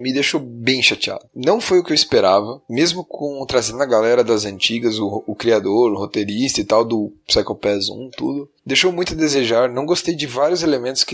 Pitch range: 115-160 Hz